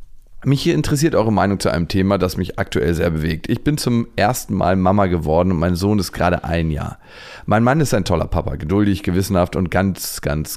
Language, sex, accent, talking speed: German, male, German, 215 wpm